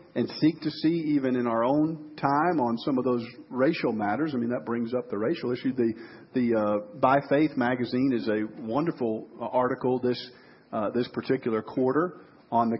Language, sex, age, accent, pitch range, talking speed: English, male, 50-69, American, 120-145 Hz, 190 wpm